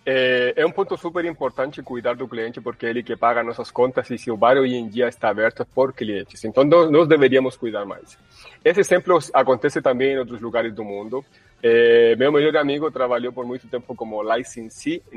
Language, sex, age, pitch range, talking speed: Portuguese, male, 30-49, 120-145 Hz, 195 wpm